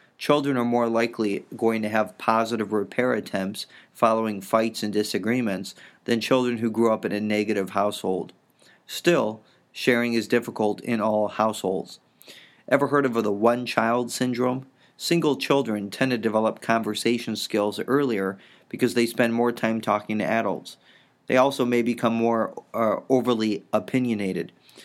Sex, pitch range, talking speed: male, 105-125 Hz, 145 wpm